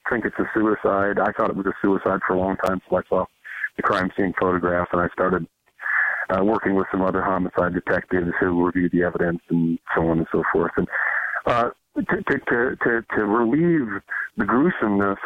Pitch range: 90-100 Hz